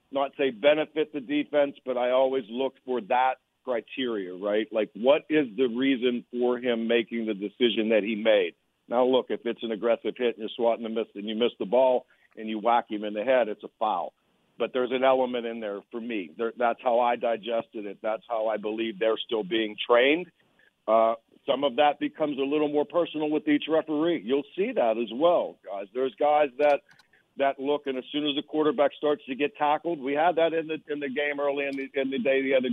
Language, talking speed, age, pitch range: English, 225 wpm, 60-79, 115-145 Hz